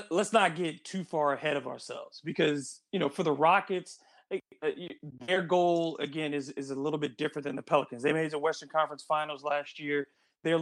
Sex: male